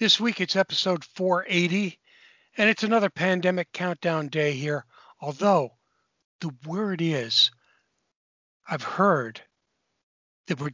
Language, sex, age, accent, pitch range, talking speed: English, male, 60-79, American, 145-185 Hz, 110 wpm